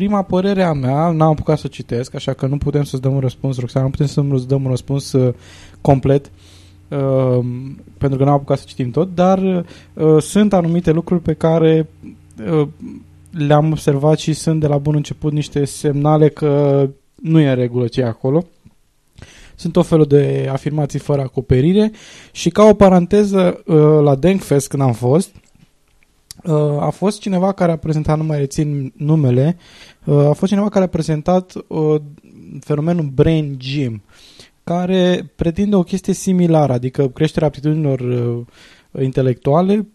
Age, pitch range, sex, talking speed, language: 20-39, 135-175 Hz, male, 150 wpm, Romanian